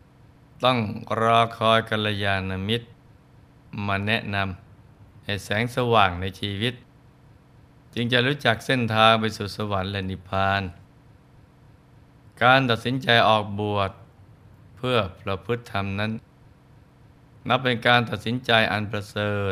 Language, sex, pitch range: Thai, male, 100-125 Hz